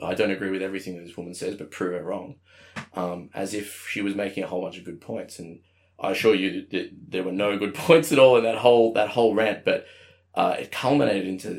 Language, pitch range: English, 90-115 Hz